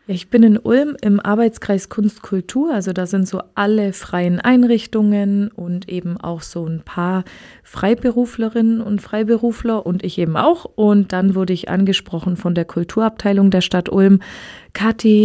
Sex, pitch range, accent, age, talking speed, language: female, 185-225 Hz, German, 30-49, 155 wpm, German